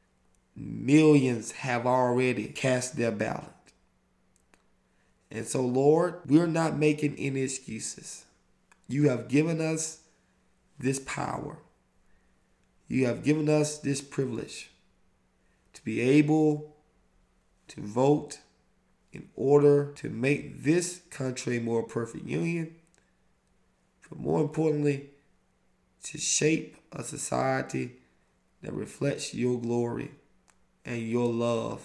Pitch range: 115-145 Hz